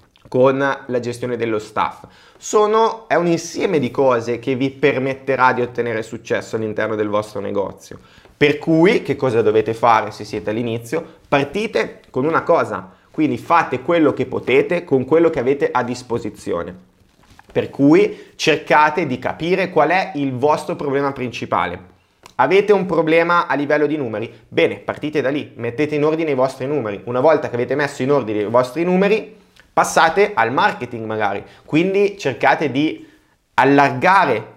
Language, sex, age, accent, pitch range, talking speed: Italian, male, 30-49, native, 115-155 Hz, 155 wpm